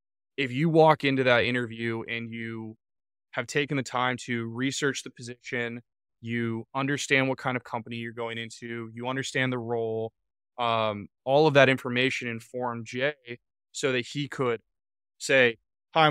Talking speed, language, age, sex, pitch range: 155 wpm, English, 20-39, male, 115-140 Hz